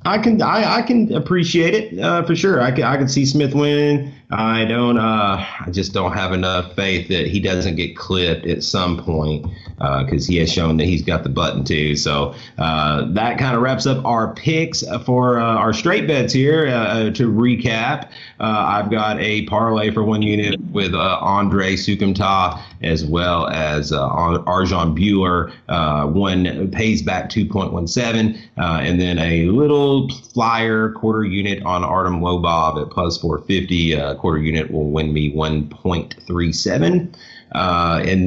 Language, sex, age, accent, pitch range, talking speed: English, male, 30-49, American, 85-115 Hz, 170 wpm